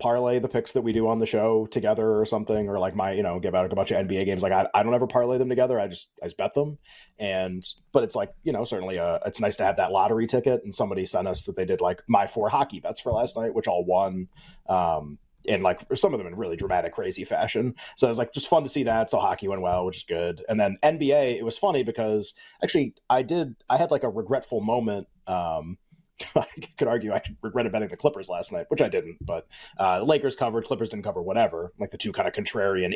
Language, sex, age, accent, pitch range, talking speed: English, male, 30-49, American, 110-145 Hz, 260 wpm